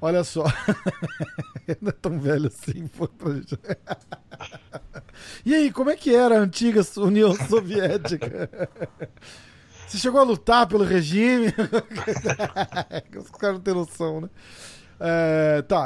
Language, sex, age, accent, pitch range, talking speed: Portuguese, male, 40-59, Brazilian, 145-200 Hz, 125 wpm